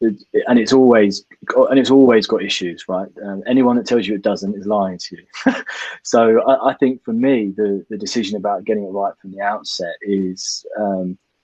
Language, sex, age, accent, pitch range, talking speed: English, male, 20-39, British, 95-115 Hz, 200 wpm